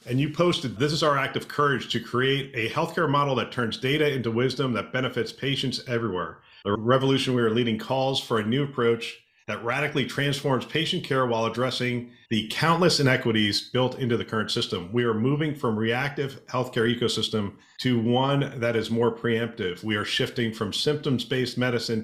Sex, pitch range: male, 115-135 Hz